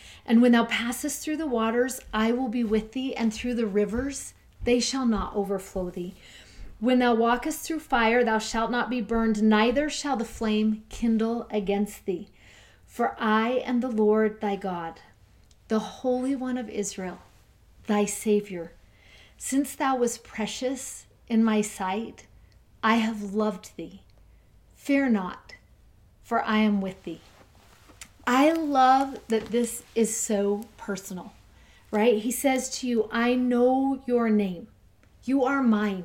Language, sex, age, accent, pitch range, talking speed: English, female, 40-59, American, 210-250 Hz, 150 wpm